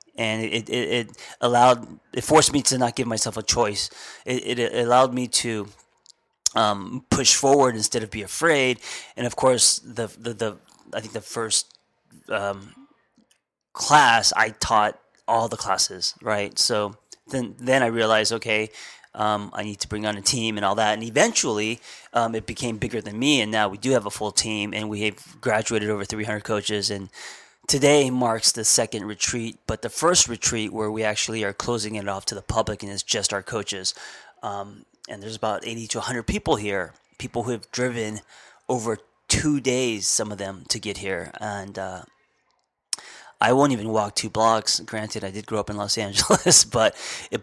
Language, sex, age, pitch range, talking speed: English, male, 20-39, 105-125 Hz, 190 wpm